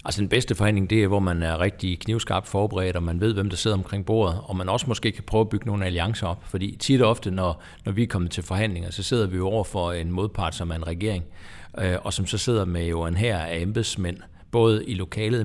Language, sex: Danish, male